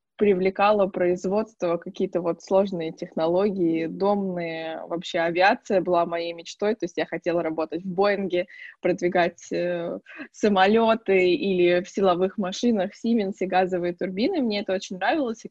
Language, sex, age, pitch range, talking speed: Russian, female, 20-39, 180-210 Hz, 135 wpm